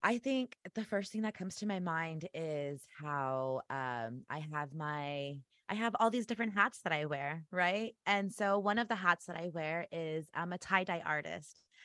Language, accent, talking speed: English, American, 205 wpm